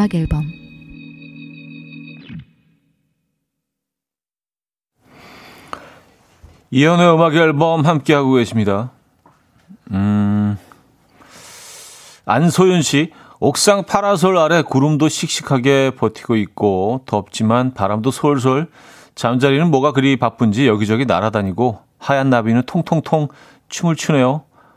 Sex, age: male, 40-59